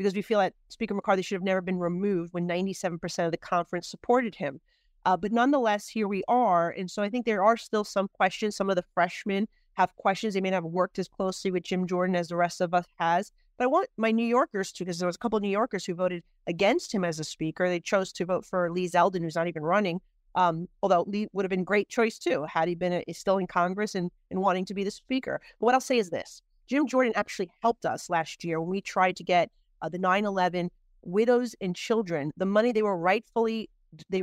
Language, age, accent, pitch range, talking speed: English, 40-59, American, 175-215 Hz, 250 wpm